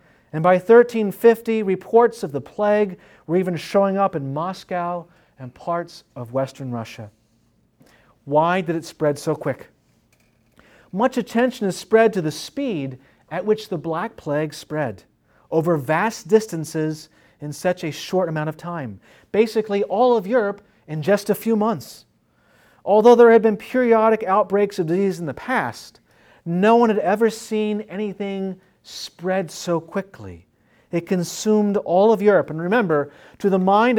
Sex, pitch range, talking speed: male, 155-215 Hz, 150 wpm